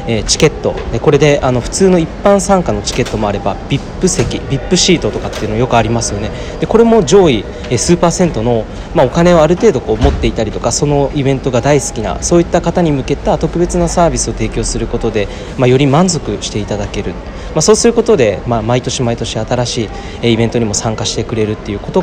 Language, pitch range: Japanese, 110-155 Hz